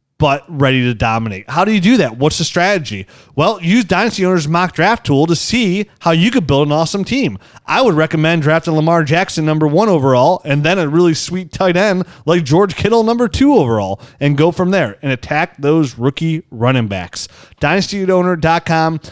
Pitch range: 135-180 Hz